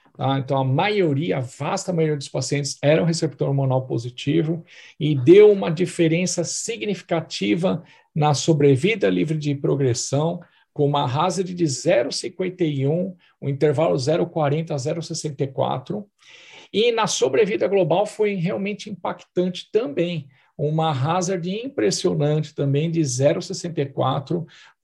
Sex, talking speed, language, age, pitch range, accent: male, 115 wpm, Portuguese, 50-69, 140-175 Hz, Brazilian